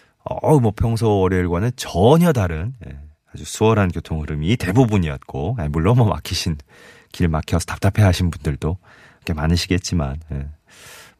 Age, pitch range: 30-49, 80-125 Hz